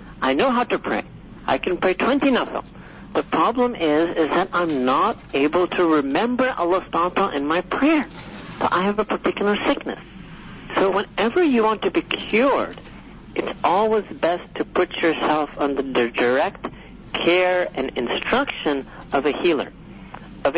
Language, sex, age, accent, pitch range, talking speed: English, male, 60-79, American, 140-185 Hz, 155 wpm